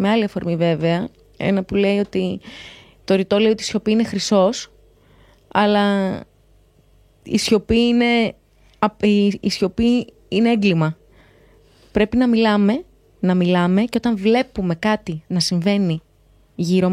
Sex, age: female, 20-39